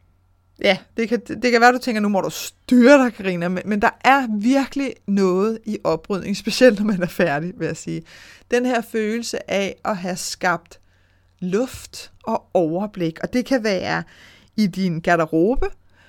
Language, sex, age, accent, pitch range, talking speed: Danish, female, 30-49, native, 180-235 Hz, 180 wpm